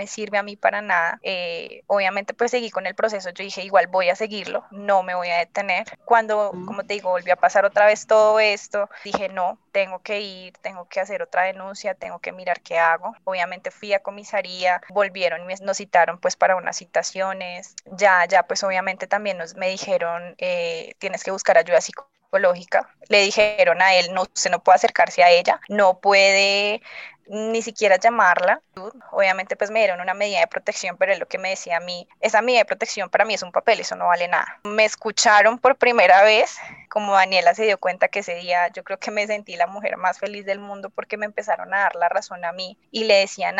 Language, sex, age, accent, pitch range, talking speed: Spanish, female, 20-39, Colombian, 180-210 Hz, 215 wpm